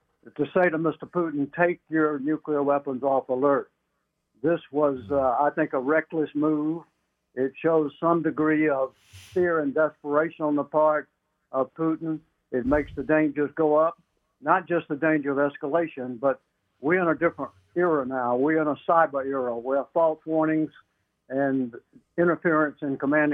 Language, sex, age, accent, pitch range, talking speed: English, male, 60-79, American, 135-155 Hz, 160 wpm